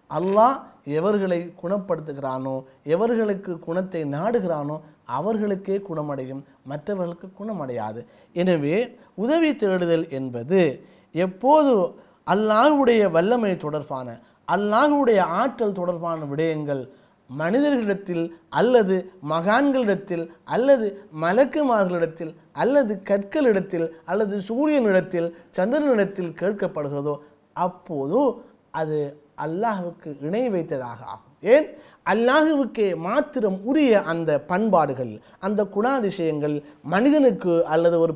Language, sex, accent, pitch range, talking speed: Tamil, male, native, 160-225 Hz, 80 wpm